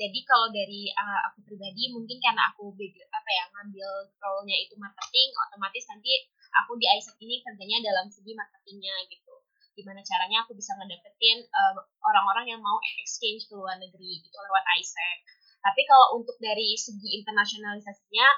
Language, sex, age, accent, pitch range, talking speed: Indonesian, female, 10-29, native, 205-280 Hz, 155 wpm